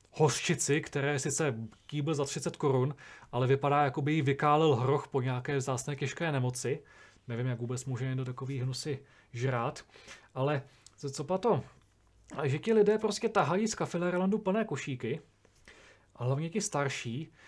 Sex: male